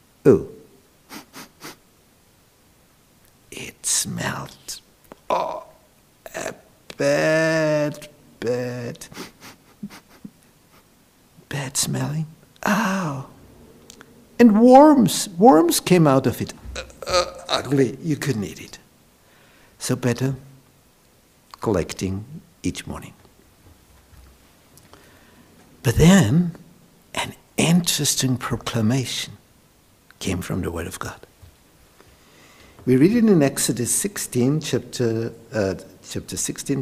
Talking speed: 80 wpm